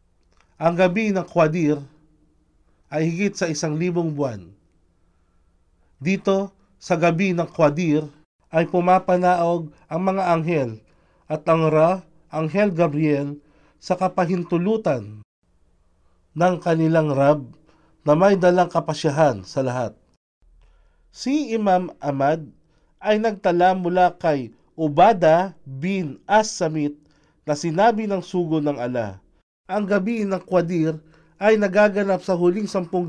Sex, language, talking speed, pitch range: male, Filipino, 110 wpm, 140-185 Hz